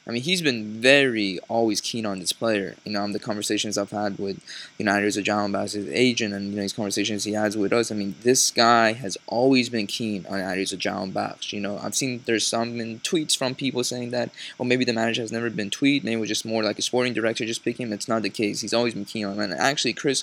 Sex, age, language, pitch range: male, 20-39, English, 105-120 Hz